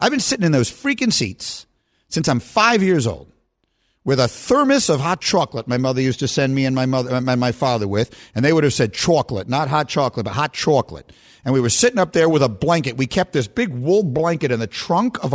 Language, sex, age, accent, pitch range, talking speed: English, male, 50-69, American, 135-195 Hz, 240 wpm